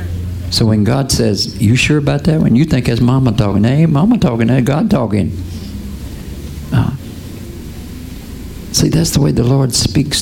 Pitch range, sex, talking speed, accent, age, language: 90-125 Hz, male, 160 wpm, American, 60-79, English